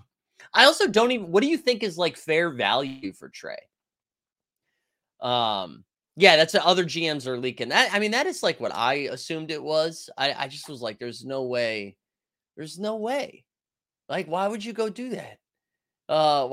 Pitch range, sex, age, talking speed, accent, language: 125-185 Hz, male, 30-49, 190 wpm, American, English